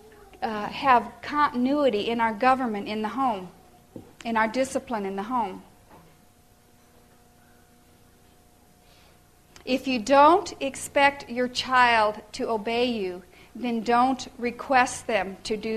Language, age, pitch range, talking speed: English, 50-69, 230-280 Hz, 115 wpm